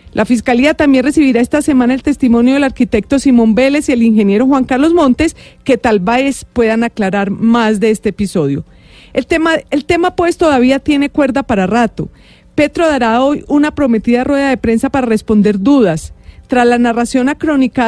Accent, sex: Colombian, female